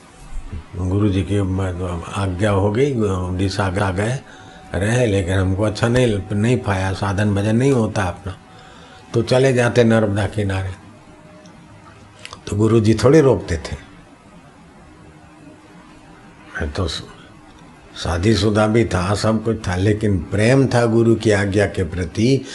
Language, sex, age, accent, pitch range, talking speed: Hindi, male, 50-69, native, 95-115 Hz, 120 wpm